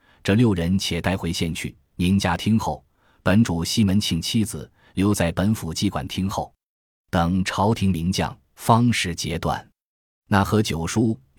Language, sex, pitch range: Chinese, male, 85-110 Hz